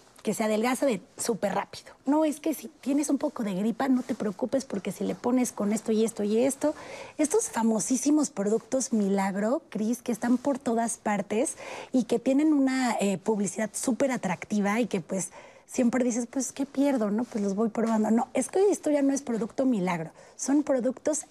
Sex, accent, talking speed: female, Mexican, 195 wpm